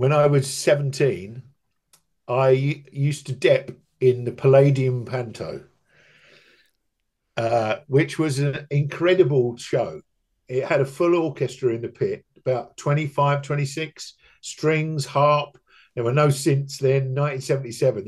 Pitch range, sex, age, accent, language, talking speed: 120-145 Hz, male, 50-69, British, English, 125 wpm